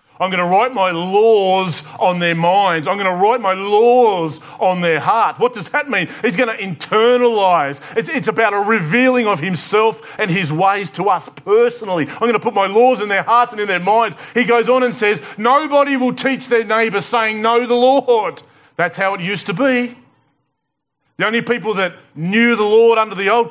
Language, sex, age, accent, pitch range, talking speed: English, male, 40-59, Australian, 150-225 Hz, 210 wpm